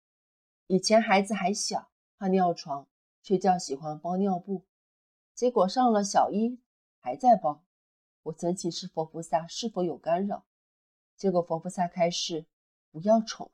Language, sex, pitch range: Chinese, female, 145-190 Hz